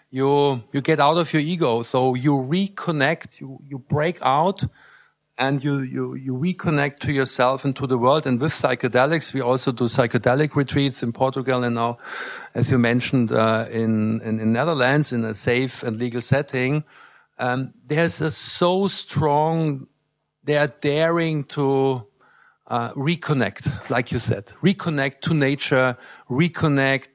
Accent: German